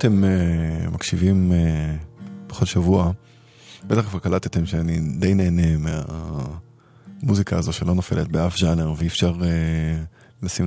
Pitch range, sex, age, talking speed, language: 90-110 Hz, male, 20-39, 135 wpm, Hebrew